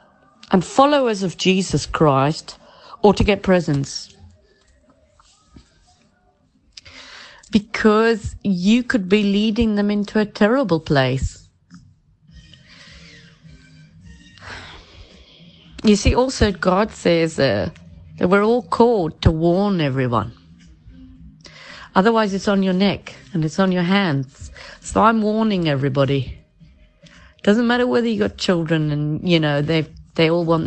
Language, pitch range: English, 145-200 Hz